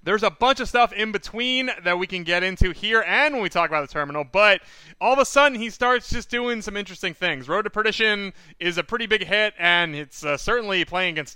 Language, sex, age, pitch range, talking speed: English, male, 30-49, 170-225 Hz, 245 wpm